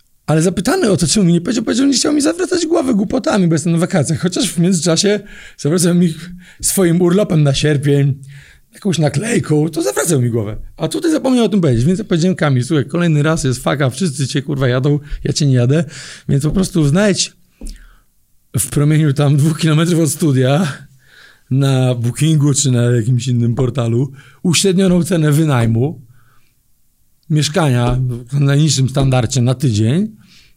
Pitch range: 130-180 Hz